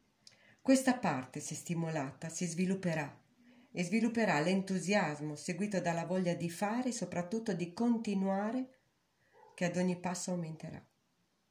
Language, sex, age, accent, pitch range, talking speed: Italian, female, 40-59, native, 155-210 Hz, 120 wpm